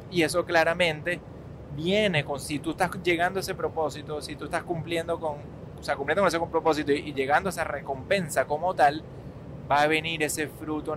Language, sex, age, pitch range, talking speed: Spanish, male, 20-39, 140-155 Hz, 190 wpm